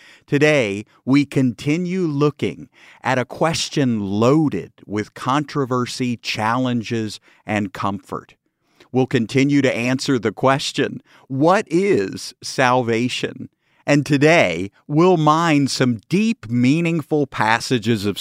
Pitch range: 120-155 Hz